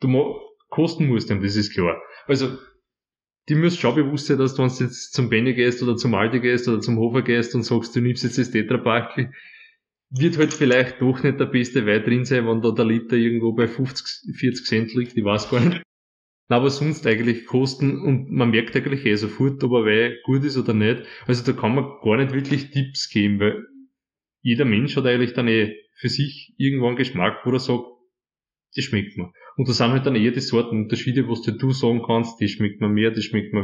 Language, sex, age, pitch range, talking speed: German, male, 20-39, 115-135 Hz, 225 wpm